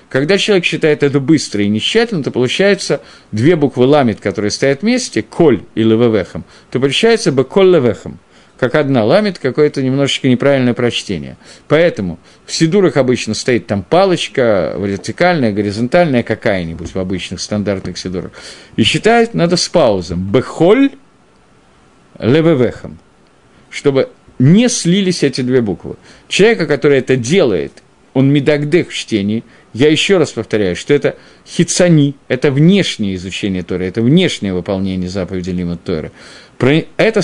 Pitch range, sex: 110-160 Hz, male